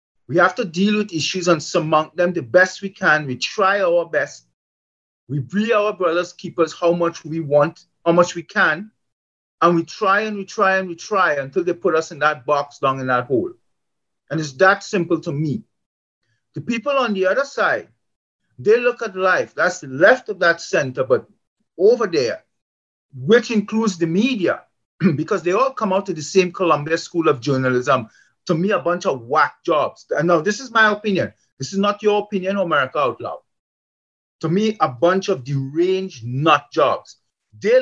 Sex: male